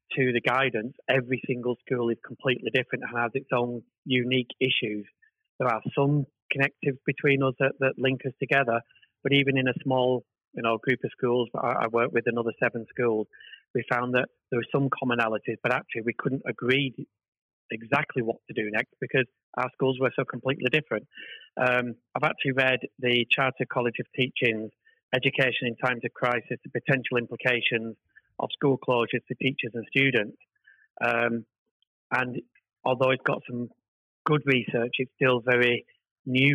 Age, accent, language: 30-49, British, English